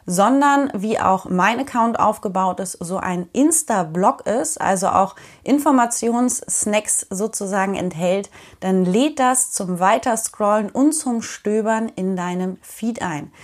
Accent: German